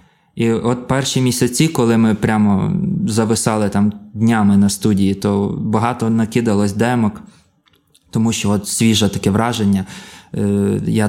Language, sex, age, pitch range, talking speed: Ukrainian, male, 20-39, 105-125 Hz, 125 wpm